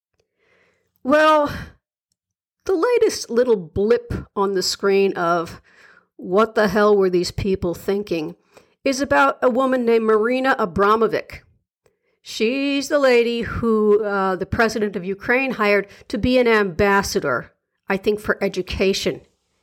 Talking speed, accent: 125 wpm, American